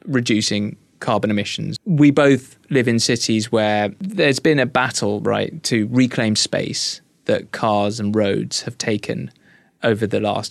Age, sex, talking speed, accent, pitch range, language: 20-39, male, 150 wpm, British, 110-150 Hz, English